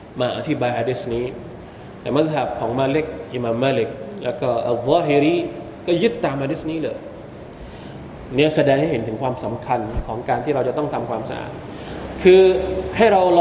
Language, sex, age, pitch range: Thai, male, 20-39, 170-245 Hz